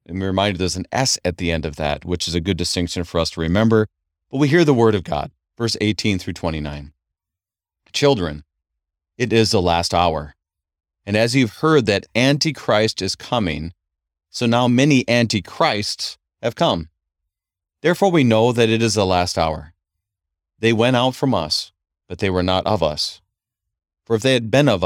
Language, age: English, 40-59